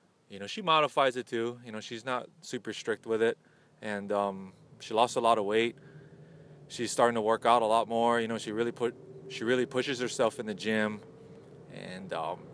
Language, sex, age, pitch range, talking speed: English, male, 20-39, 105-135 Hz, 210 wpm